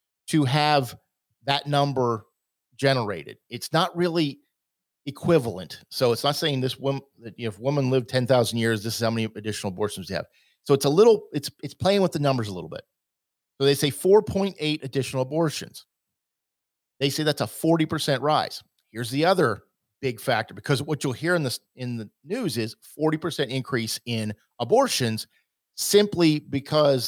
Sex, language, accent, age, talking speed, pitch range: male, English, American, 40-59, 170 wpm, 115-150 Hz